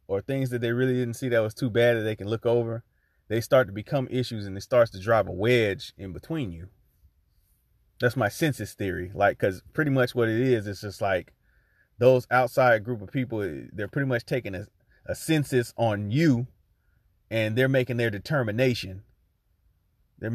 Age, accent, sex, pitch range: 30-49, American, male, 95-120 Hz